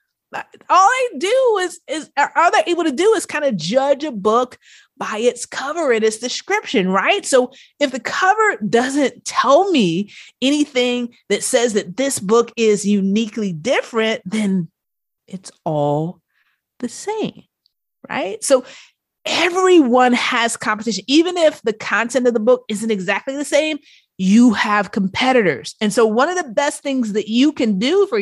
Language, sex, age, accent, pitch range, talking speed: English, female, 30-49, American, 200-280 Hz, 160 wpm